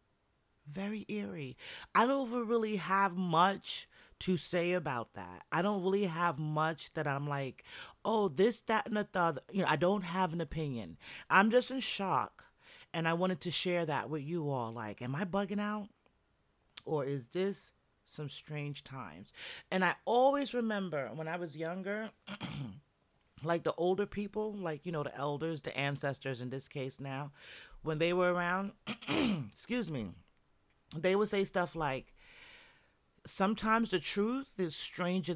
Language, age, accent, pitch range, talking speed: English, 30-49, American, 145-200 Hz, 160 wpm